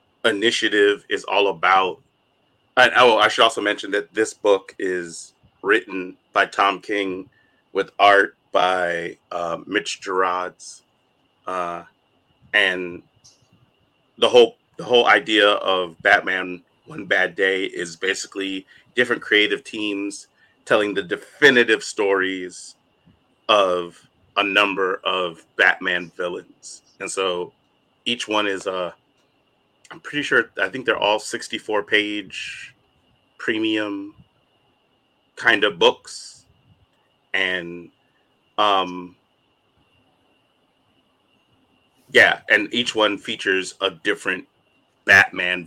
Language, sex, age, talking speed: English, male, 30-49, 100 wpm